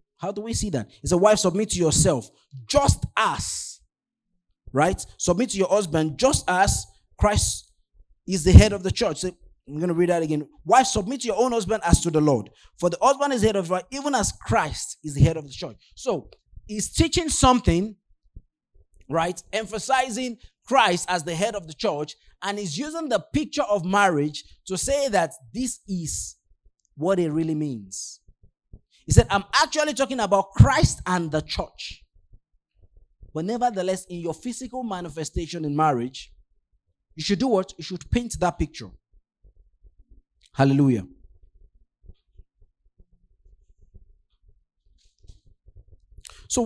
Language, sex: English, male